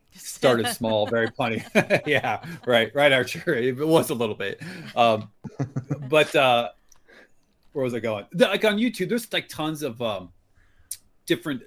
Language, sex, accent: English, male, American